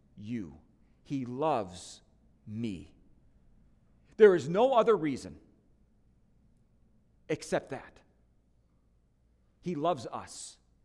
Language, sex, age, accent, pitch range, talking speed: English, male, 50-69, American, 155-235 Hz, 75 wpm